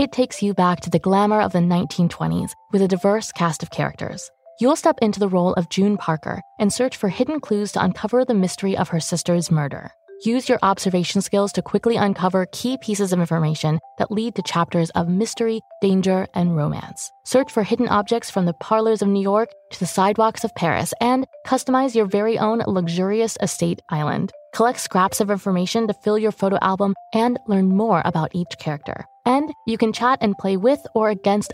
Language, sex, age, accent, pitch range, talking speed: English, female, 20-39, American, 185-255 Hz, 200 wpm